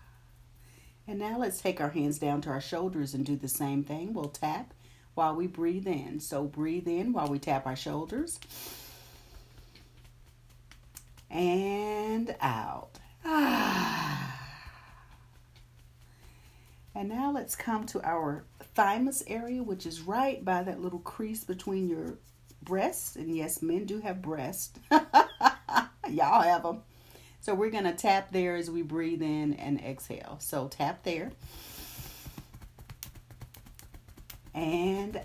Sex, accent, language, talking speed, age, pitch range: female, American, English, 125 wpm, 40-59, 125-185 Hz